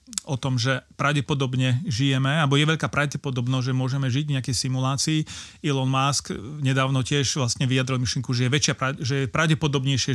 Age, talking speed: 40-59, 150 wpm